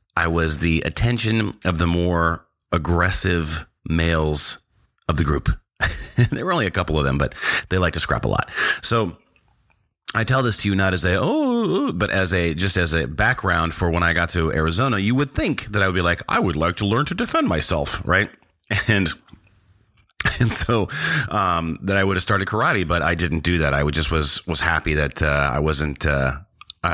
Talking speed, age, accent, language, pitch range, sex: 210 wpm, 30-49, American, English, 85-110 Hz, male